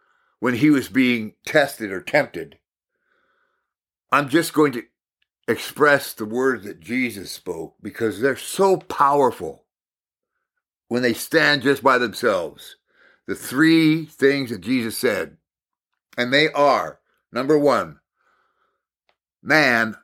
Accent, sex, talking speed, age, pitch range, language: American, male, 115 wpm, 50-69, 115-160 Hz, English